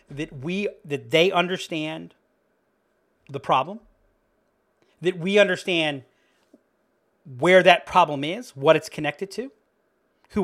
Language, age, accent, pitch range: English, 40-59, American, 155-205 Hz